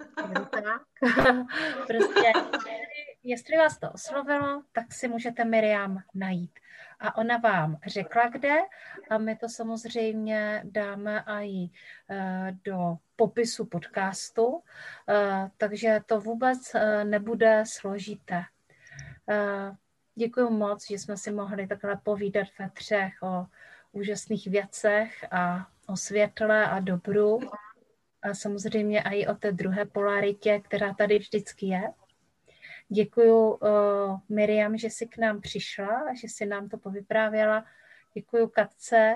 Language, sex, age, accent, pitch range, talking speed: Czech, female, 30-49, native, 200-230 Hz, 115 wpm